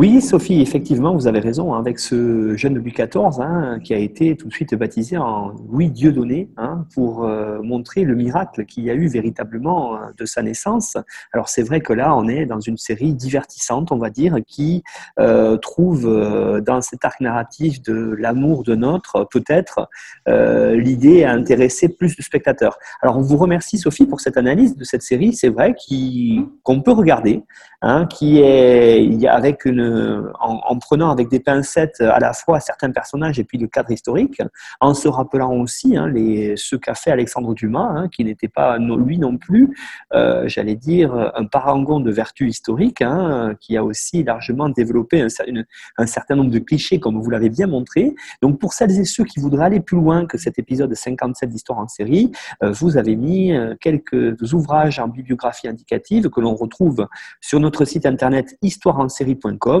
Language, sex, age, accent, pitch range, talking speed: French, male, 30-49, French, 115-160 Hz, 190 wpm